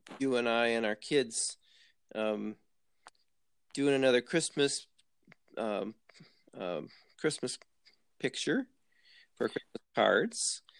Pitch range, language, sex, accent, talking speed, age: 110-135 Hz, English, male, American, 95 wpm, 40-59